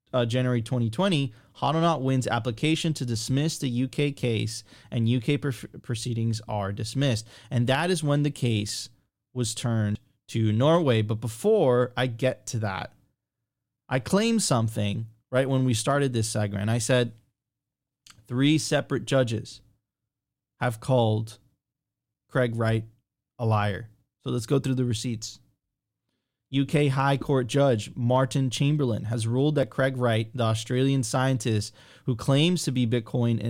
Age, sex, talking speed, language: 20-39, male, 140 wpm, English